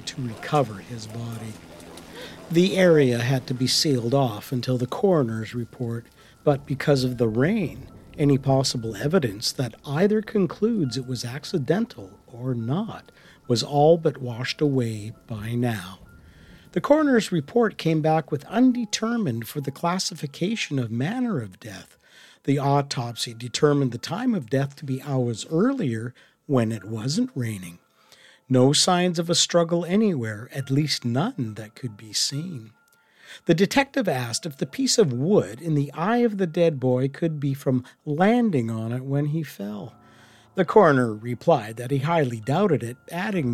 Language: English